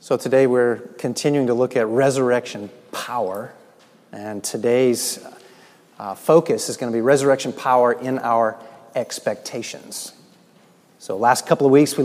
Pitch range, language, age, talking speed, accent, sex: 120-150 Hz, English, 30-49, 140 wpm, American, male